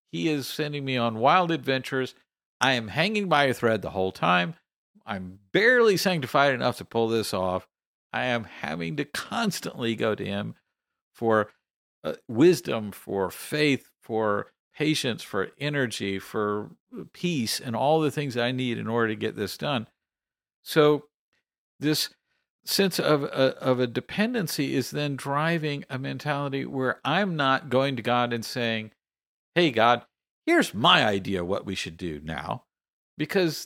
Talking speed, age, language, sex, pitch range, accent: 155 wpm, 50-69, English, male, 115-160 Hz, American